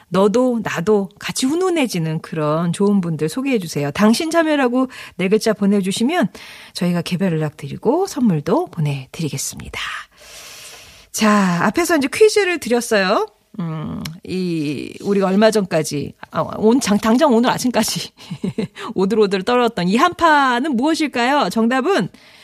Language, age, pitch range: Korean, 40-59, 180-265 Hz